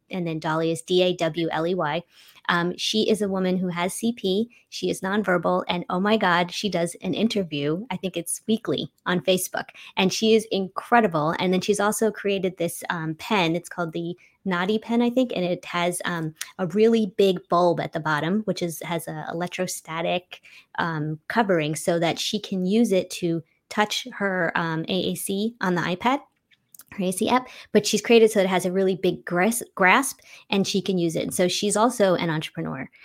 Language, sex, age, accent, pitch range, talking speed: English, female, 20-39, American, 170-215 Hz, 185 wpm